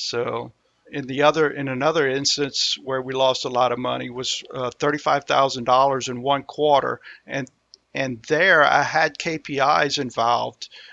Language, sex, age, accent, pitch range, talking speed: English, male, 50-69, American, 130-150 Hz, 150 wpm